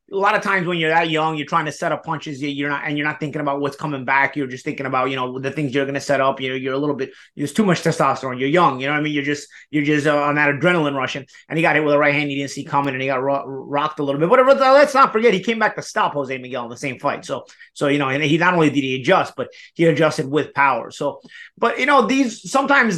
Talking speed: 310 wpm